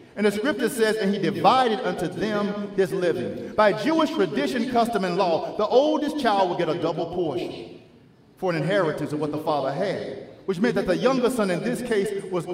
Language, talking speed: English, 205 wpm